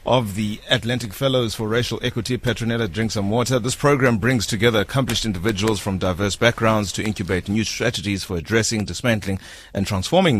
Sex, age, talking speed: male, 30-49, 165 wpm